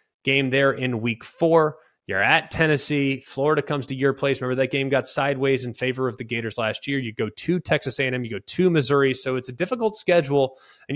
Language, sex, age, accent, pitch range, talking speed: English, male, 20-39, American, 120-145 Hz, 220 wpm